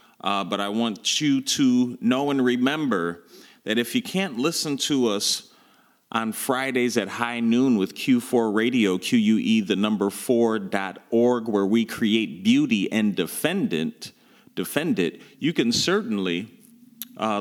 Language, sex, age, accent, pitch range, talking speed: English, male, 40-59, American, 105-135 Hz, 140 wpm